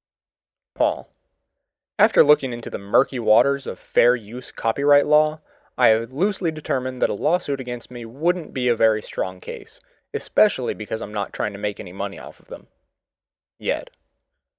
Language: English